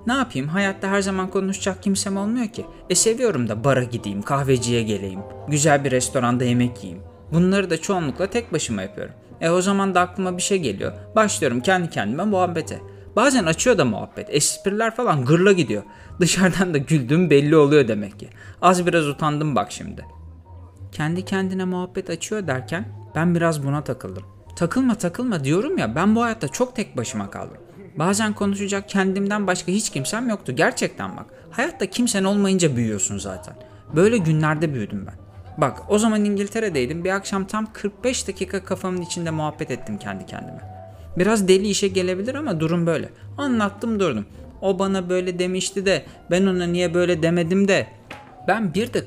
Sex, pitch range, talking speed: male, 120-195 Hz, 165 wpm